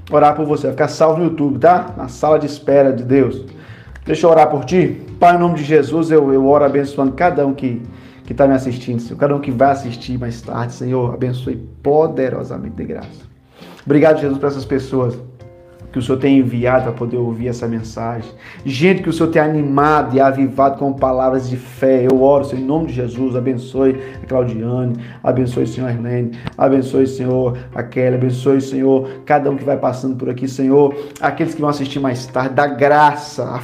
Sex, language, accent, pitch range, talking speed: male, Portuguese, Brazilian, 125-155 Hz, 205 wpm